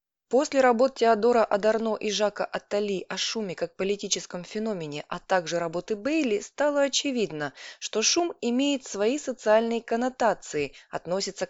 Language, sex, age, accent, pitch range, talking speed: Russian, female, 20-39, native, 180-235 Hz, 130 wpm